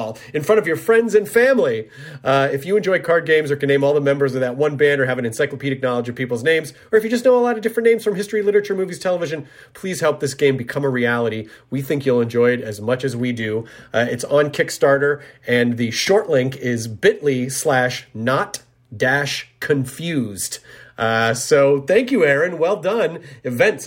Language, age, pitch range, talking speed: English, 30-49, 130-175 Hz, 210 wpm